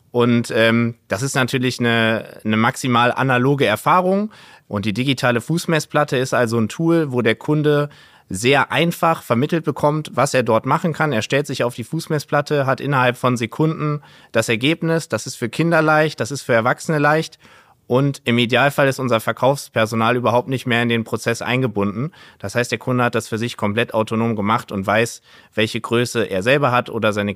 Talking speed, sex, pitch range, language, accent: 185 wpm, male, 115-140 Hz, German, German